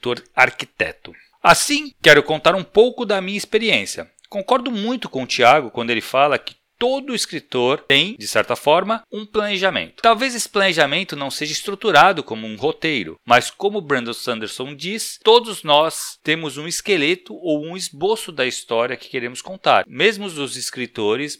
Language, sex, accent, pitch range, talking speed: Portuguese, male, Brazilian, 145-220 Hz, 160 wpm